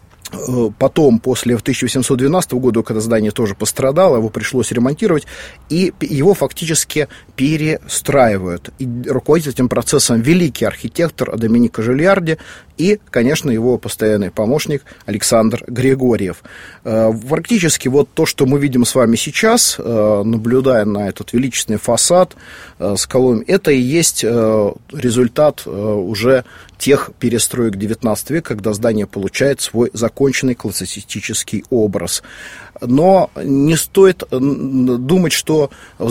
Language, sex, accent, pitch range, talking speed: Russian, male, native, 110-140 Hz, 115 wpm